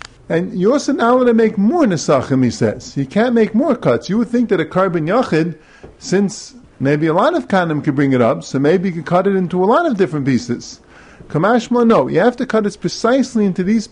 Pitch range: 160-225 Hz